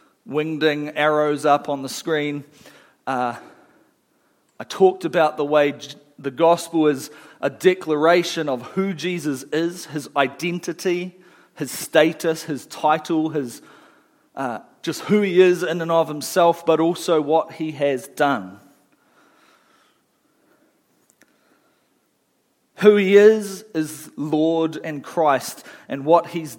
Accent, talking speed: Australian, 120 wpm